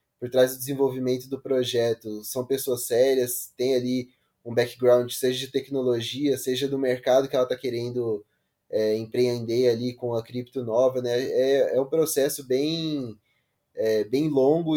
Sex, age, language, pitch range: male, 20-39, English, 125-155 Hz